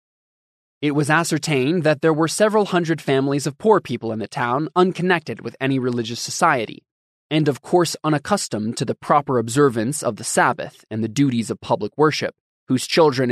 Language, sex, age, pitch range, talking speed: English, male, 20-39, 120-145 Hz, 175 wpm